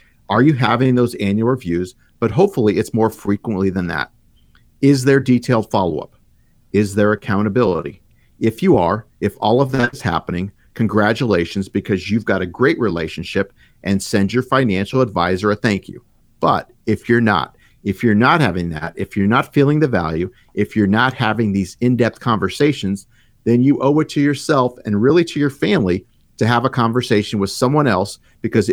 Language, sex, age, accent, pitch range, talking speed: English, male, 50-69, American, 100-125 Hz, 180 wpm